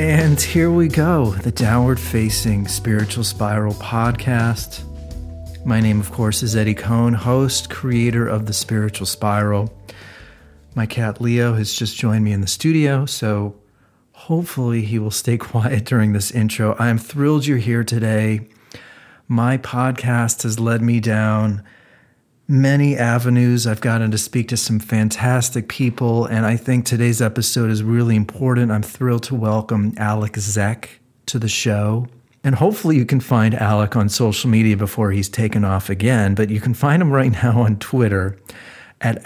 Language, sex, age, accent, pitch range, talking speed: English, male, 40-59, American, 105-120 Hz, 160 wpm